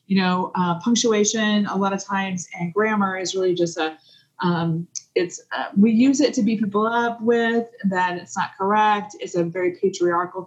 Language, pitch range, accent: English, 180-220 Hz, American